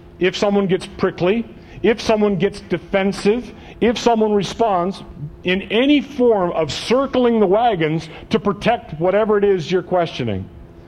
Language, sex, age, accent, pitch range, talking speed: English, male, 50-69, American, 110-175 Hz, 140 wpm